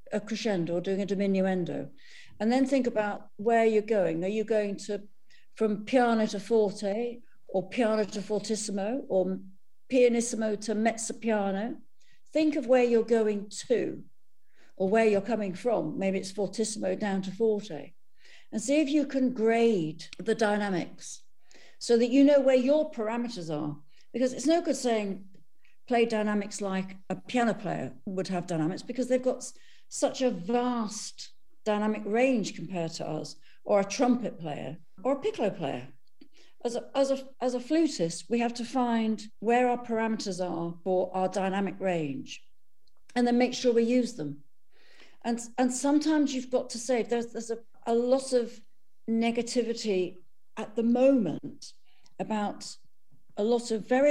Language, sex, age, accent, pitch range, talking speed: English, female, 60-79, British, 195-245 Hz, 160 wpm